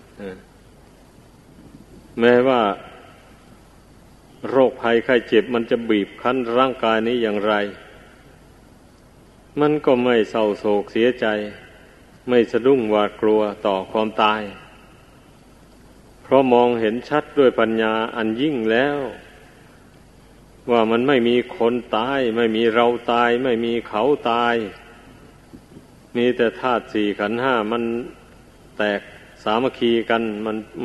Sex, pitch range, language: male, 110-125 Hz, Thai